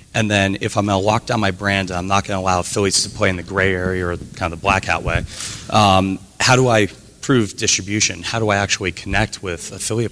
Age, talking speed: 30-49, 245 wpm